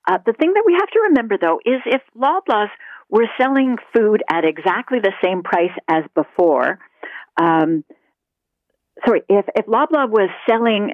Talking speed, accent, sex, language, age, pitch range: 160 wpm, American, female, English, 50-69, 165-240 Hz